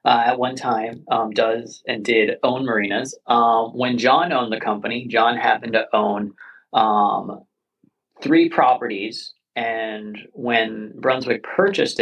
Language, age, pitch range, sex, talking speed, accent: English, 30-49, 100-115 Hz, male, 135 wpm, American